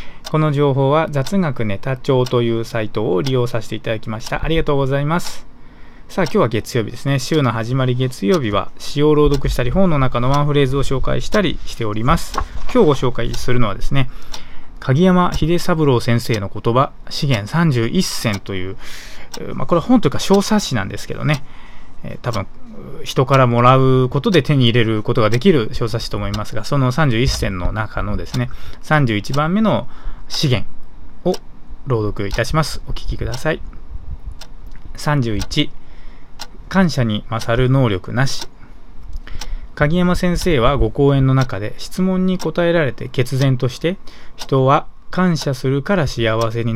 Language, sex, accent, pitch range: Japanese, male, native, 115-150 Hz